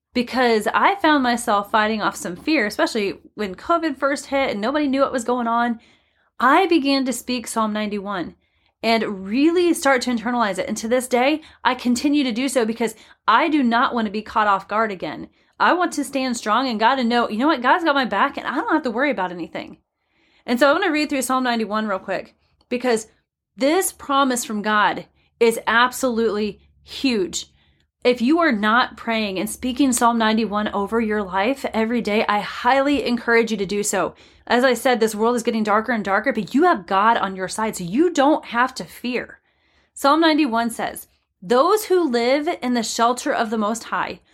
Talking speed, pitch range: 205 wpm, 215-265 Hz